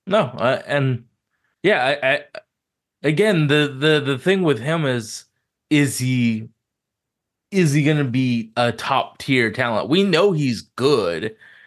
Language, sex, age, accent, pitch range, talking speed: English, male, 20-39, American, 115-150 Hz, 145 wpm